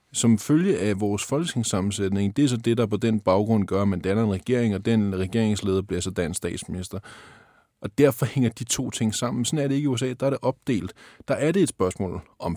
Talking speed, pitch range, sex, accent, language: 235 wpm, 100-125 Hz, male, native, Danish